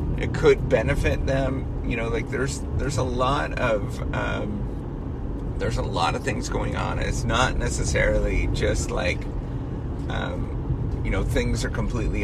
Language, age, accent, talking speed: English, 30-49, American, 150 wpm